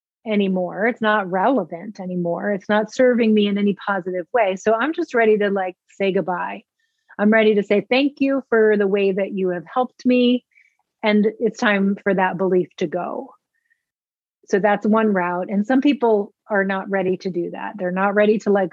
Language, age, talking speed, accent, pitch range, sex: English, 30-49, 195 wpm, American, 185-220 Hz, female